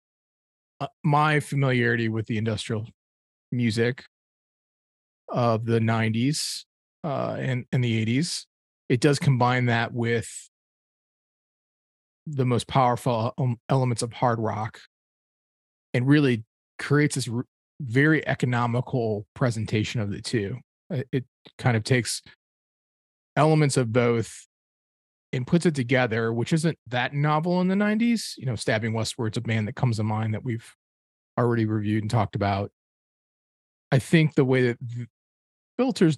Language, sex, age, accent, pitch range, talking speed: English, male, 30-49, American, 110-135 Hz, 130 wpm